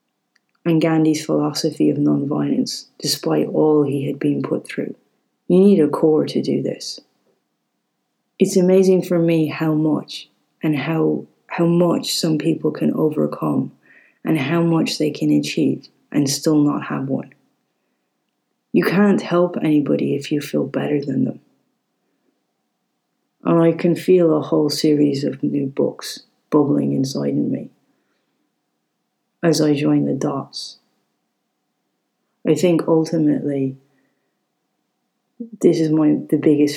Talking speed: 130 wpm